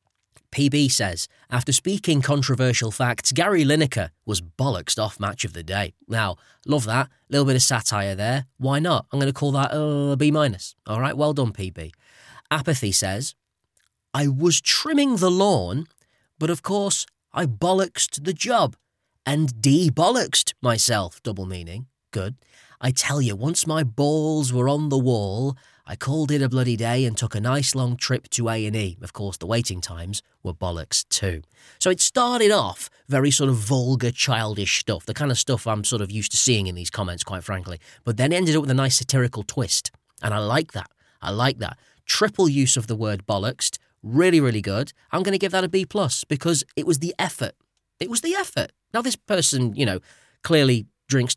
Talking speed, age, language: 195 wpm, 20-39, English